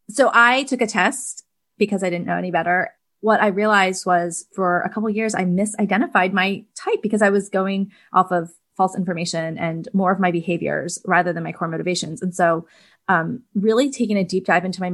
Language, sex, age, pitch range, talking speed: English, female, 20-39, 175-205 Hz, 210 wpm